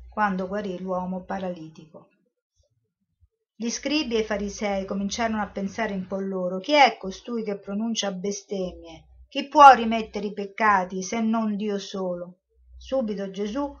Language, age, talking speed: Italian, 50-69, 140 wpm